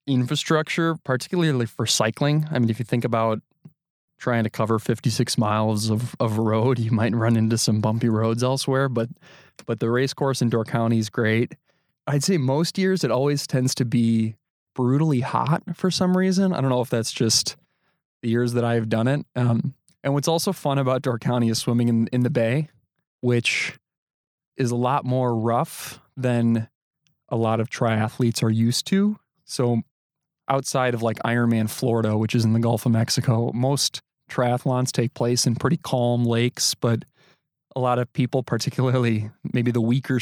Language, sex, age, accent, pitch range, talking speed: English, male, 20-39, American, 115-135 Hz, 180 wpm